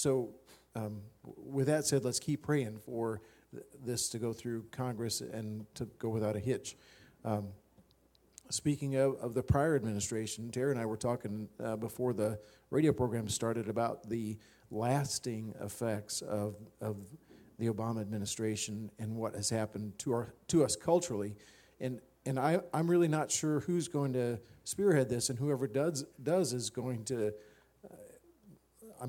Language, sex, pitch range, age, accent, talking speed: English, male, 110-135 Hz, 50-69, American, 160 wpm